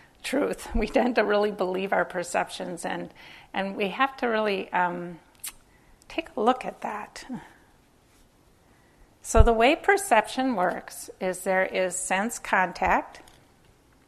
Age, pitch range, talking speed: 50-69, 185-220 Hz, 130 wpm